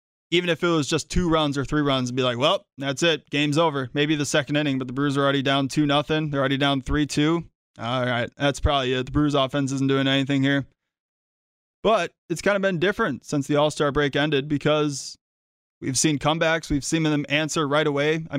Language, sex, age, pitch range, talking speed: English, male, 20-39, 135-155 Hz, 220 wpm